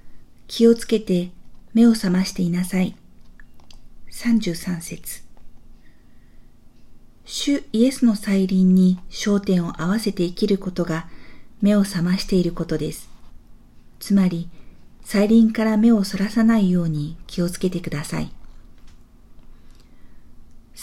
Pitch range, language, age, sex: 160-210 Hz, Japanese, 50-69, female